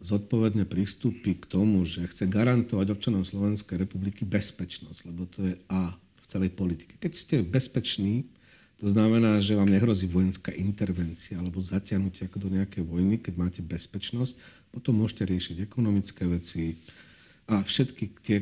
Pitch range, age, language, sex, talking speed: 95-115 Hz, 50-69, Slovak, male, 145 wpm